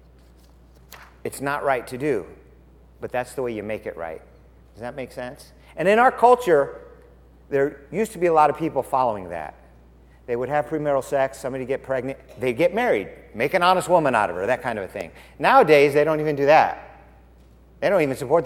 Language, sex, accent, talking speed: English, male, American, 210 wpm